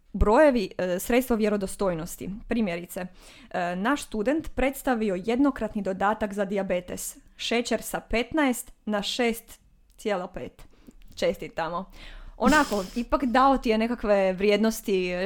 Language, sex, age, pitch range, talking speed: Croatian, female, 20-39, 200-260 Hz, 100 wpm